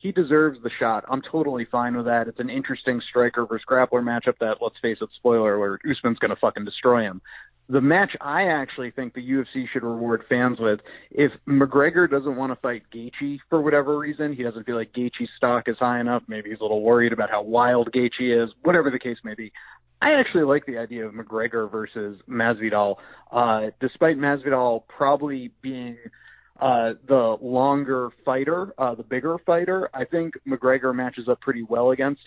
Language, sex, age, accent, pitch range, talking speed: English, male, 30-49, American, 120-140 Hz, 190 wpm